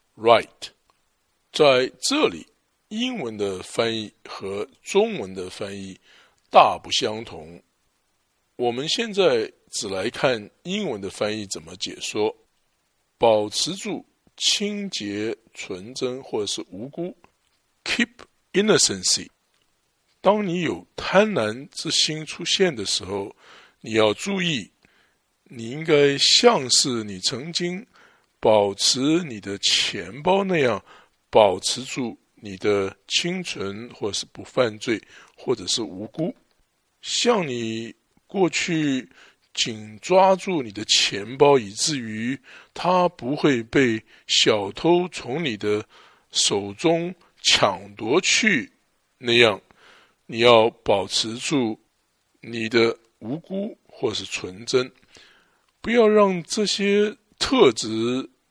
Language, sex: English, male